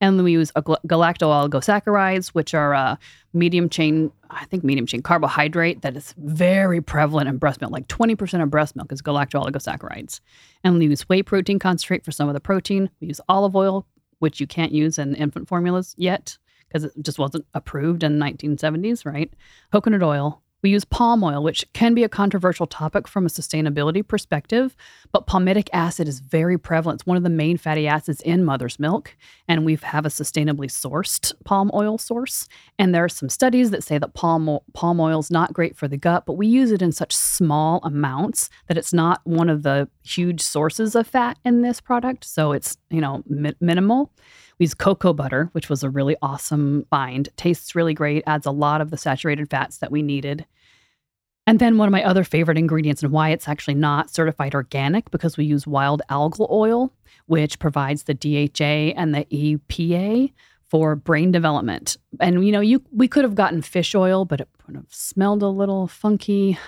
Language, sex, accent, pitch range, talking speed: English, female, American, 150-190 Hz, 195 wpm